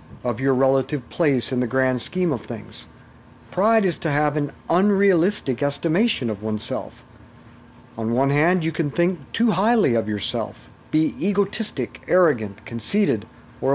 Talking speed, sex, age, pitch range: 150 wpm, male, 50-69, 125-175 Hz